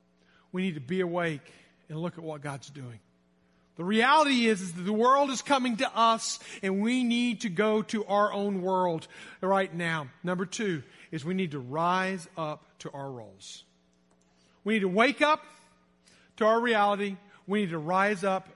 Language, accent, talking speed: English, American, 185 wpm